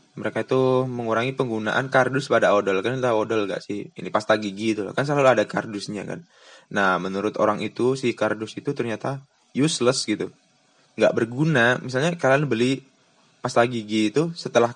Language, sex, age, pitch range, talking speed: Indonesian, male, 20-39, 100-135 Hz, 165 wpm